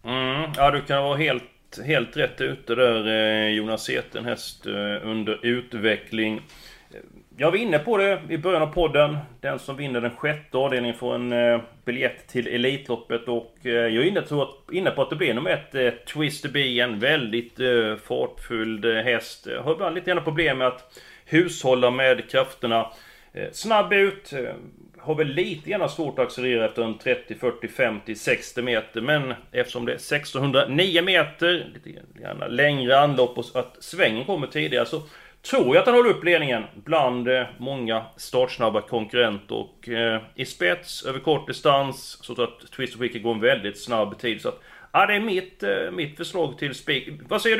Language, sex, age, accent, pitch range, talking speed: Swedish, male, 30-49, native, 120-155 Hz, 170 wpm